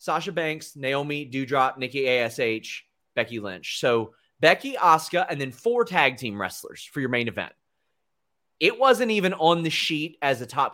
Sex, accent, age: male, American, 30-49